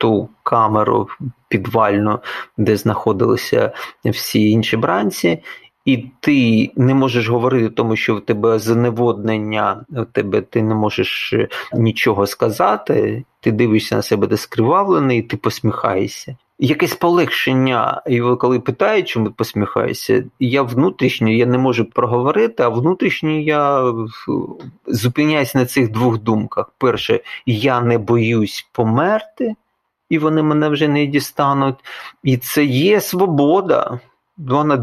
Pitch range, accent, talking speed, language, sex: 115-145 Hz, native, 120 wpm, Ukrainian, male